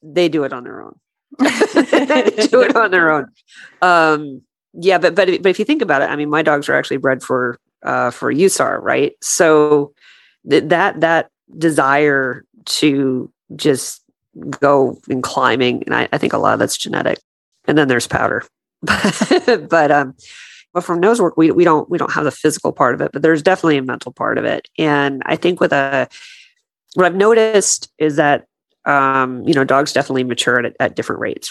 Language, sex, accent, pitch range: English, female, American, 140-180 Hz